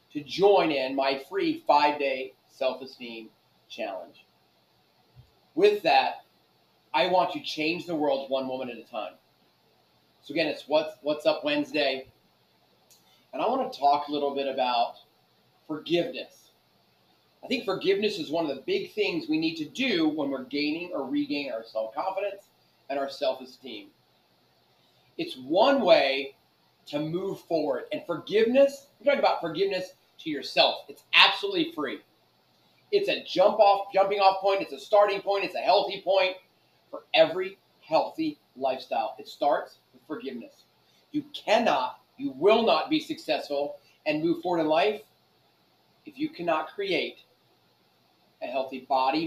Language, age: English, 30-49